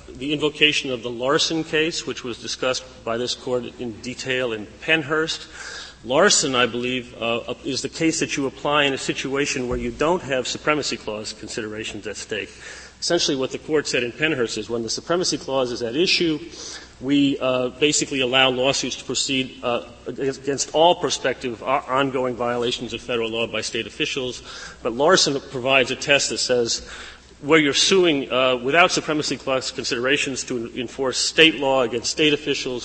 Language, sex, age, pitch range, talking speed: English, male, 40-59, 115-140 Hz, 170 wpm